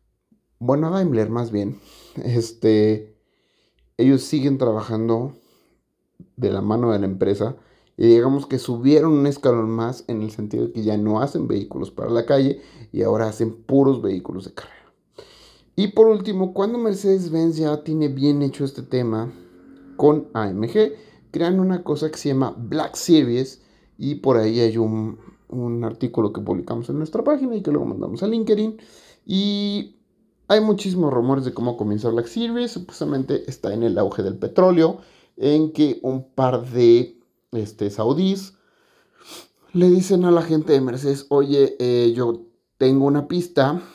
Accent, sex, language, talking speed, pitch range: Mexican, male, Spanish, 160 wpm, 115-165 Hz